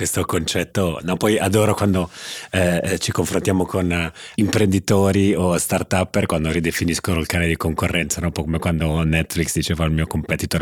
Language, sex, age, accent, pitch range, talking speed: Italian, male, 30-49, native, 85-105 Hz, 165 wpm